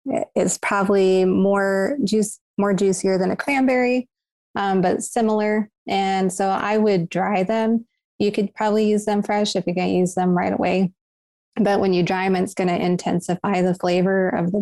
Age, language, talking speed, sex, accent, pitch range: 20-39, English, 180 wpm, female, American, 175-200 Hz